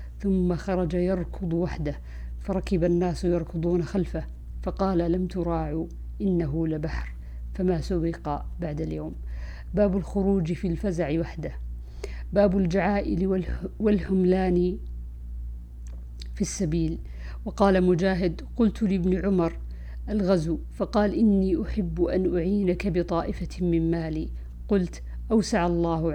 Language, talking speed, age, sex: Arabic, 100 wpm, 50-69, female